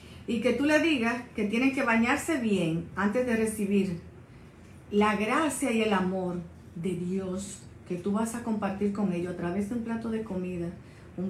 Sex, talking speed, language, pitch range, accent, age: female, 185 wpm, Spanish, 185-230 Hz, American, 50-69